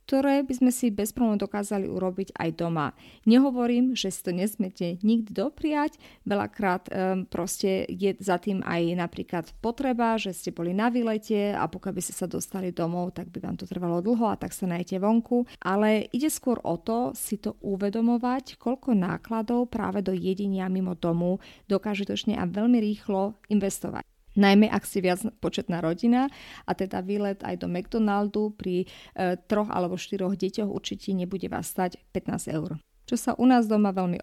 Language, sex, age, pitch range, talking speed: Slovak, female, 30-49, 185-225 Hz, 175 wpm